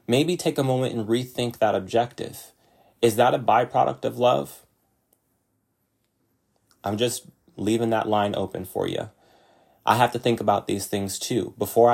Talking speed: 155 wpm